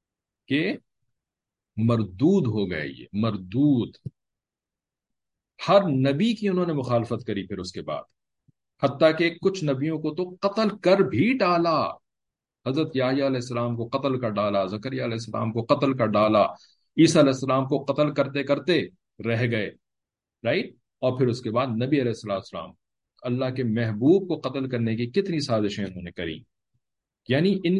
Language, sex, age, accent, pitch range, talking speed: English, male, 50-69, Indian, 110-160 Hz, 130 wpm